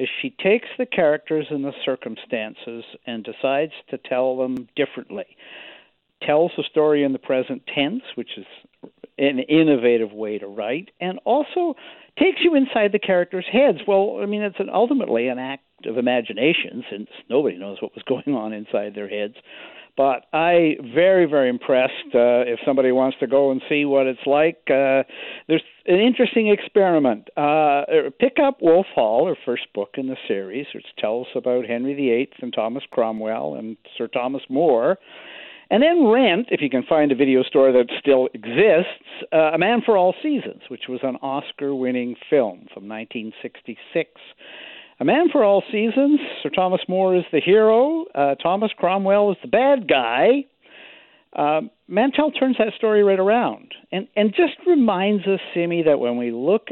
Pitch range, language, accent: 130-210 Hz, English, American